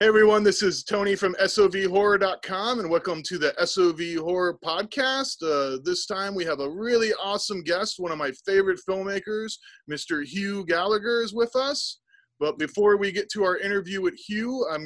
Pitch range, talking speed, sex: 135-190 Hz, 180 wpm, male